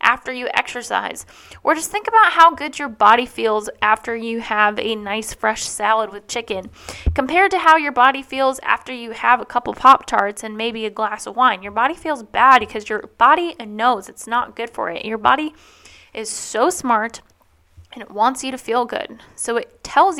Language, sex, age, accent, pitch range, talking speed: English, female, 10-29, American, 215-265 Hz, 200 wpm